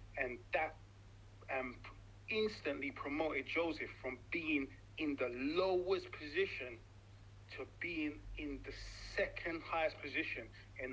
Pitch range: 100-165 Hz